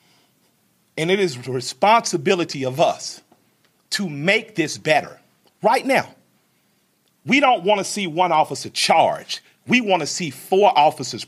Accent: American